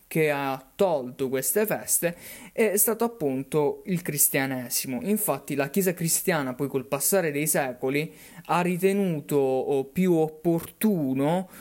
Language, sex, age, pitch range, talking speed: Italian, male, 20-39, 140-180 Hz, 120 wpm